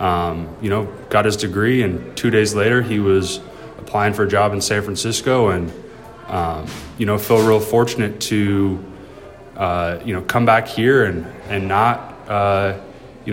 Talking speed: 170 wpm